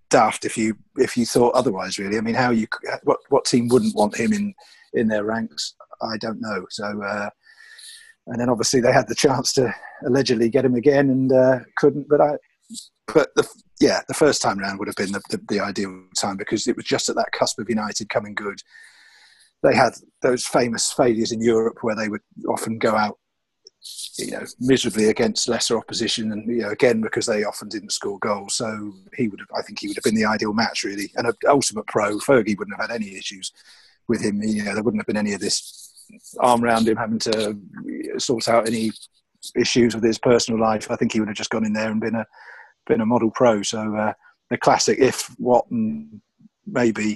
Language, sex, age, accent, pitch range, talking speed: English, male, 40-59, British, 110-130 Hz, 215 wpm